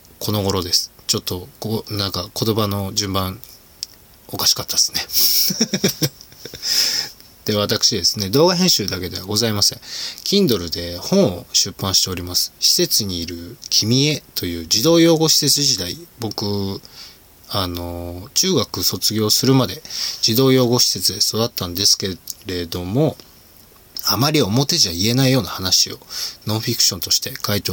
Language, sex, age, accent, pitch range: Japanese, male, 20-39, native, 95-125 Hz